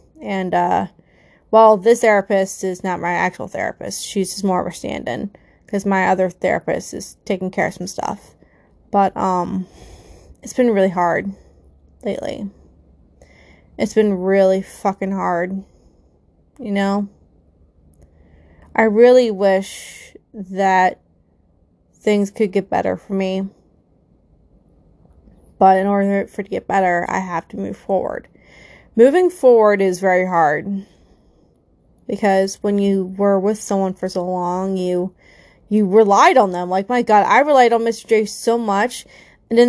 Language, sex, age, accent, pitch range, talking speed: English, female, 20-39, American, 190-225 Hz, 140 wpm